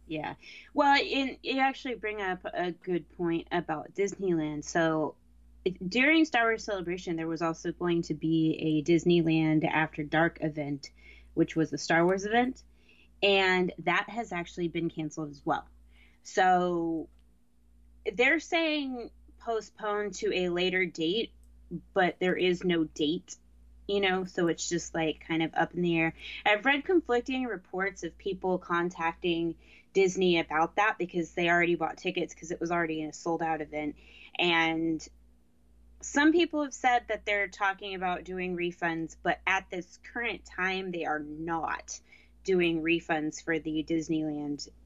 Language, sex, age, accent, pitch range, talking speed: English, female, 20-39, American, 160-190 Hz, 155 wpm